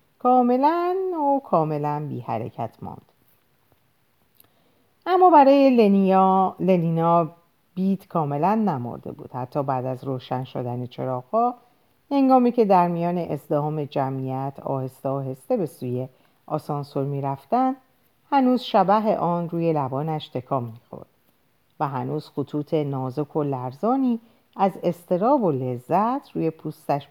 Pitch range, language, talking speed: 135-225 Hz, Persian, 115 wpm